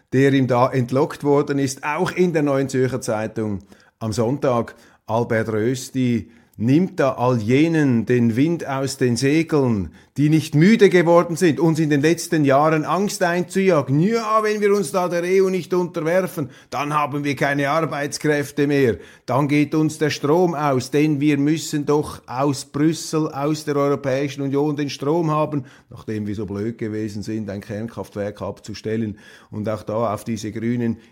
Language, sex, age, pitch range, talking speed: German, male, 30-49, 115-150 Hz, 165 wpm